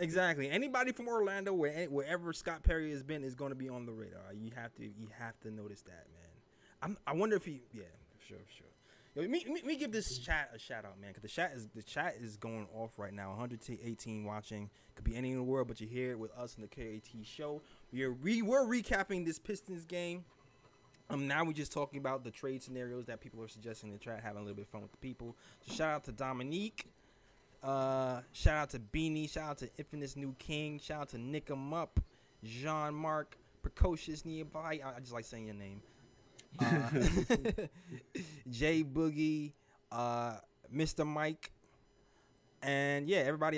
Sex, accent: male, American